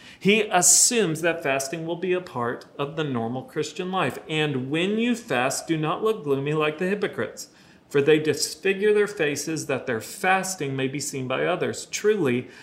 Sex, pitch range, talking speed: male, 130-190 Hz, 180 wpm